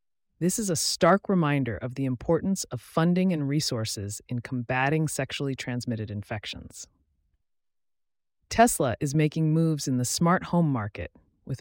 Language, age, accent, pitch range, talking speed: English, 30-49, American, 110-160 Hz, 140 wpm